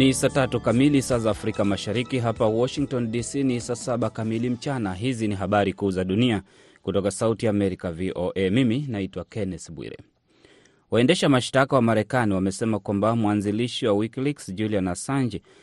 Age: 30-49